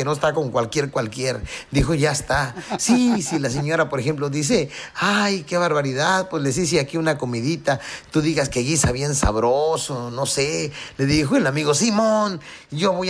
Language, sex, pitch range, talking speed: Spanish, male, 135-190 Hz, 185 wpm